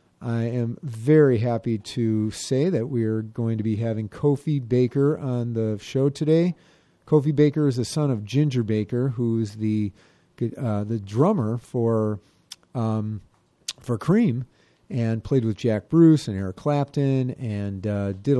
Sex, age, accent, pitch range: male, 40-59, American, 110-140 Hz